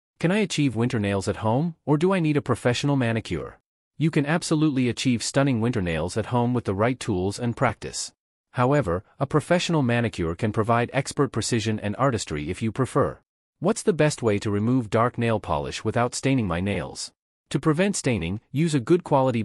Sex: male